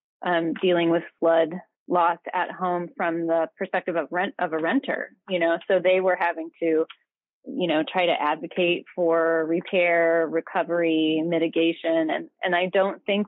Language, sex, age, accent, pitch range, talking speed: English, female, 30-49, American, 165-195 Hz, 165 wpm